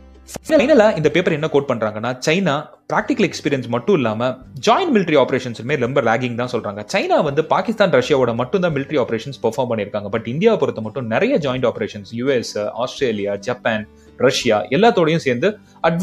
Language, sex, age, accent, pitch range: Tamil, male, 30-49, native, 115-180 Hz